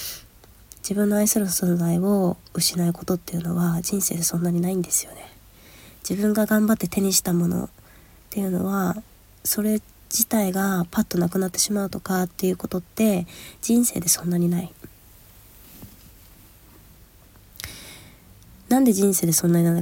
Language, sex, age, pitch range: Japanese, female, 20-39, 165-195 Hz